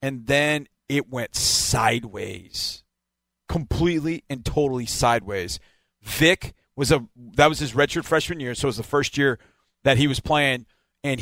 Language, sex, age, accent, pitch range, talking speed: English, male, 30-49, American, 135-175 Hz, 155 wpm